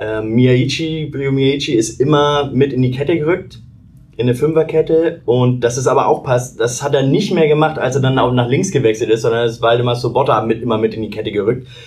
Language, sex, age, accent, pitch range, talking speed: German, male, 20-39, German, 125-150 Hz, 220 wpm